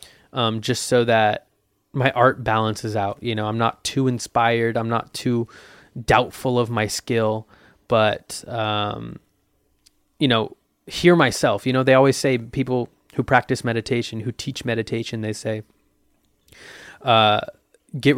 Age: 20-39